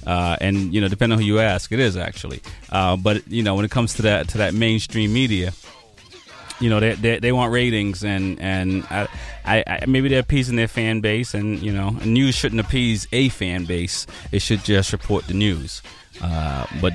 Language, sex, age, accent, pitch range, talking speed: English, male, 30-49, American, 95-115 Hz, 210 wpm